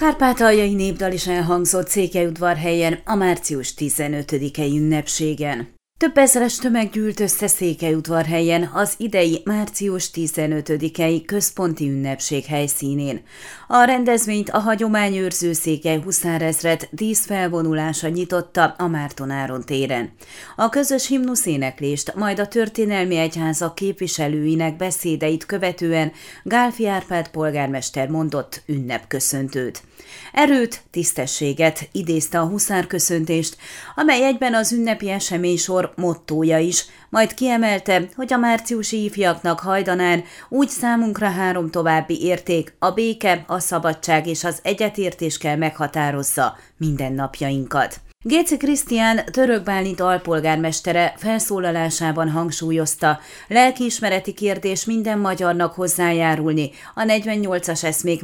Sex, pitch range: female, 155-205 Hz